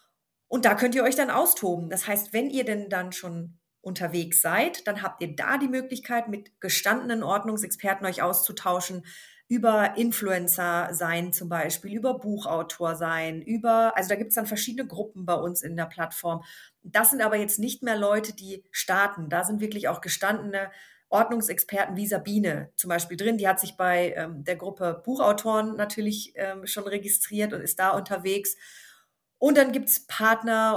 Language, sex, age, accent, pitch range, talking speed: German, female, 30-49, German, 180-225 Hz, 175 wpm